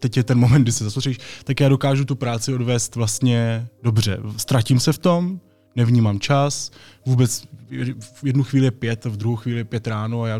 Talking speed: 190 wpm